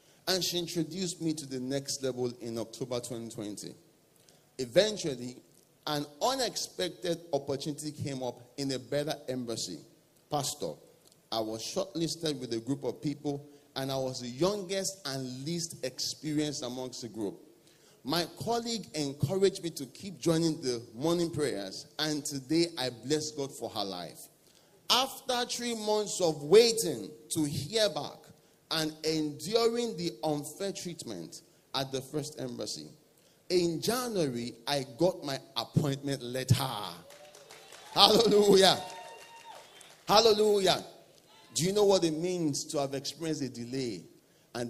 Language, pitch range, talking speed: English, 135-170 Hz, 130 wpm